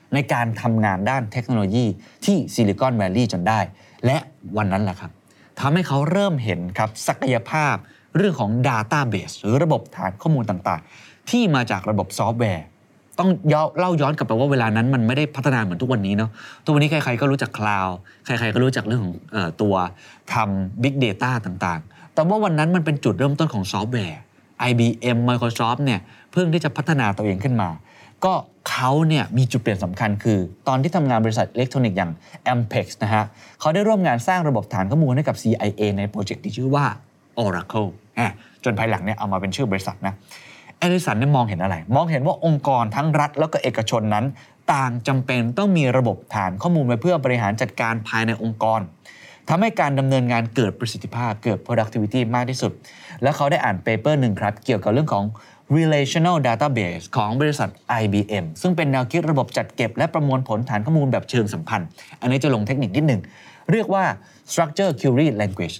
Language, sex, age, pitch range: Thai, male, 20-39, 105-145 Hz